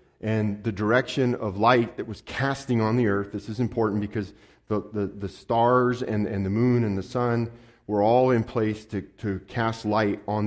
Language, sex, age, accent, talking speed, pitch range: English, male, 40-59, American, 200 wpm, 100-120 Hz